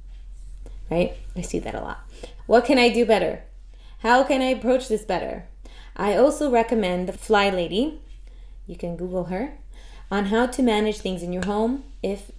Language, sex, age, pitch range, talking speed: English, female, 20-39, 180-230 Hz, 175 wpm